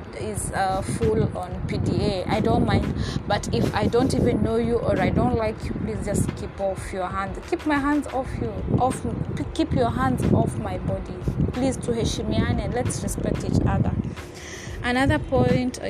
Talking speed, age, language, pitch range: 185 wpm, 20-39, English, 230-280 Hz